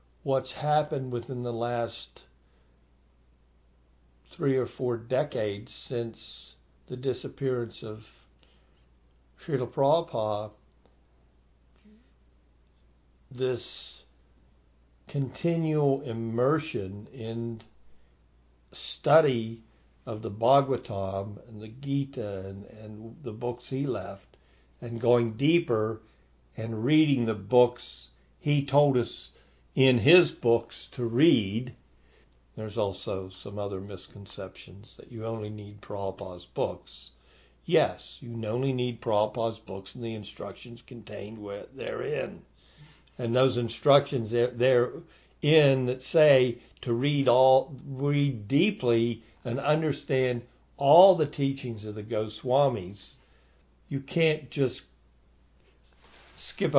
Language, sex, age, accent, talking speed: English, male, 60-79, American, 95 wpm